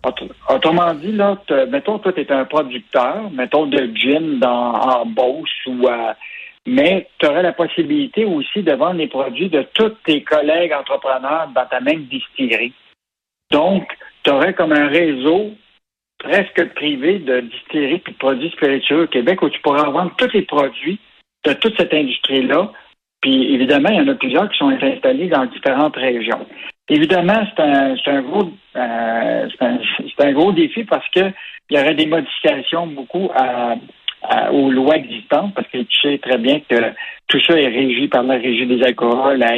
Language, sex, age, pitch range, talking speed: French, male, 60-79, 135-210 Hz, 180 wpm